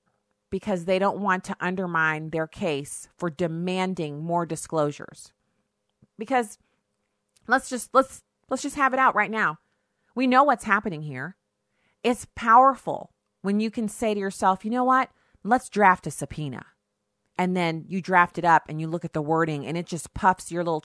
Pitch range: 150-205 Hz